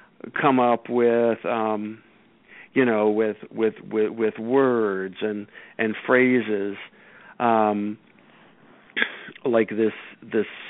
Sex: male